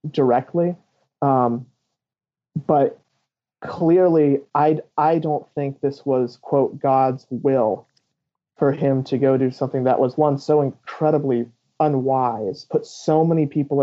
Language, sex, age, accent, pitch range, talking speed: English, male, 30-49, American, 130-150 Hz, 125 wpm